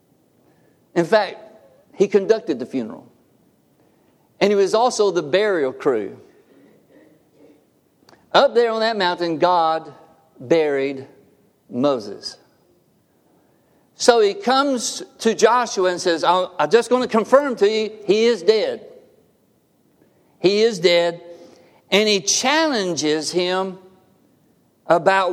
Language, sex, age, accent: English, male, 50-69, American